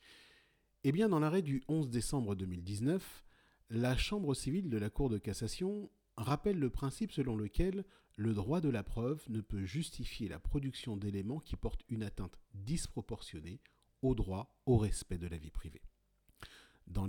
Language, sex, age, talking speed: French, male, 40-59, 155 wpm